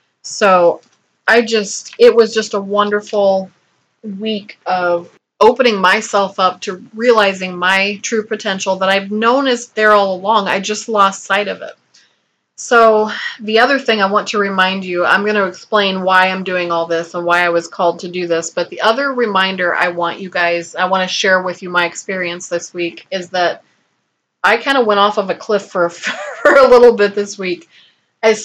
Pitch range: 180-220 Hz